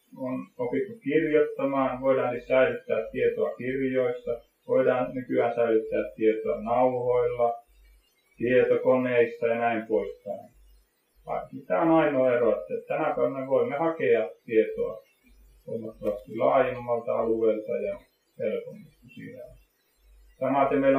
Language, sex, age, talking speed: Finnish, male, 30-49, 95 wpm